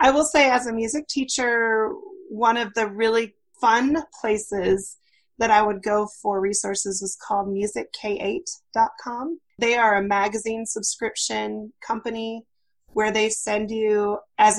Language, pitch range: English, 190-220 Hz